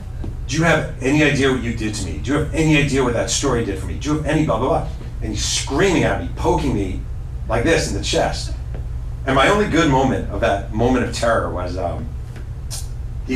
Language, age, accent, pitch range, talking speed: English, 40-59, American, 105-135 Hz, 240 wpm